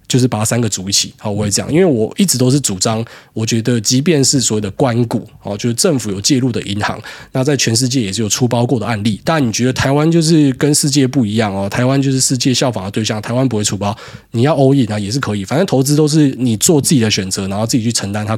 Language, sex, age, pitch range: Chinese, male, 20-39, 105-140 Hz